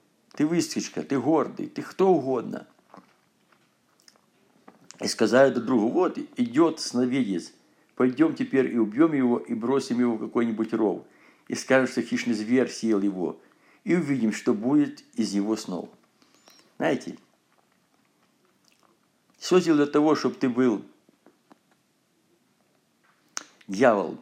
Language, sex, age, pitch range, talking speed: Russian, male, 50-69, 105-135 Hz, 115 wpm